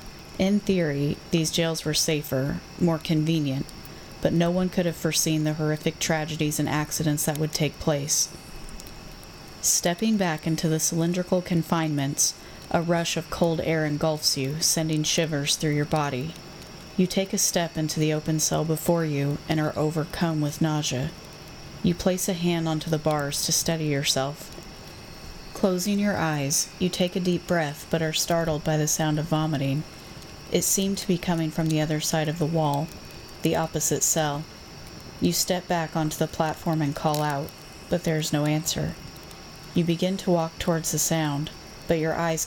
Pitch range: 150-170 Hz